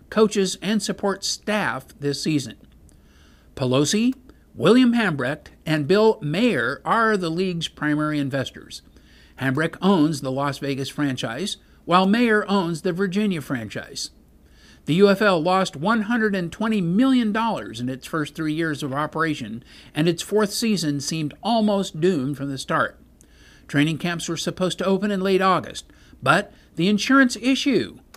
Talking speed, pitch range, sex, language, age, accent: 135 wpm, 145-210 Hz, male, English, 50-69, American